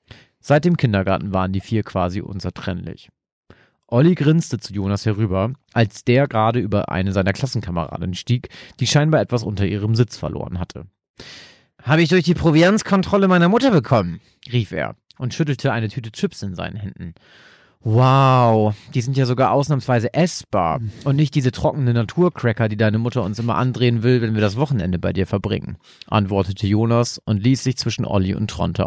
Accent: German